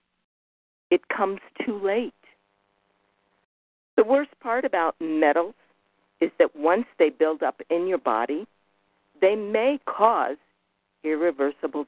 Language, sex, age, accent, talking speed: English, female, 50-69, American, 110 wpm